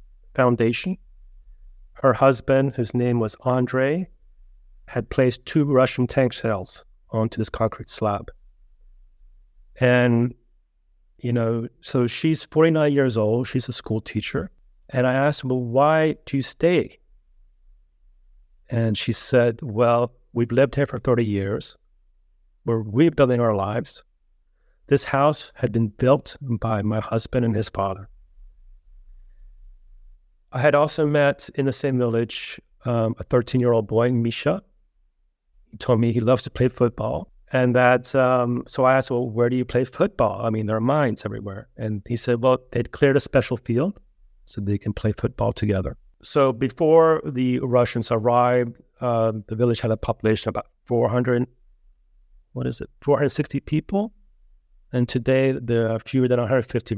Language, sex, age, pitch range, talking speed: English, male, 40-59, 105-130 Hz, 150 wpm